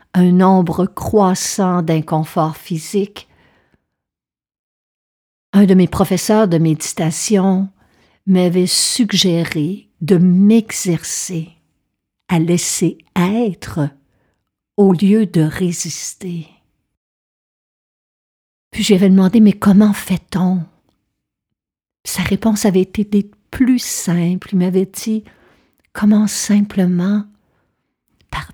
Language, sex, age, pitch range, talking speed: French, female, 60-79, 165-200 Hz, 85 wpm